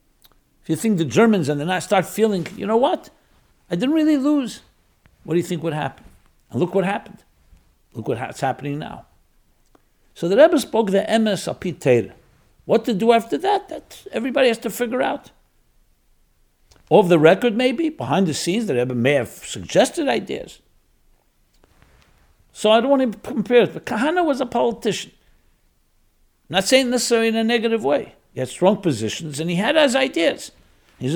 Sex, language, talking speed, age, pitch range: male, English, 175 wpm, 60-79, 135-225 Hz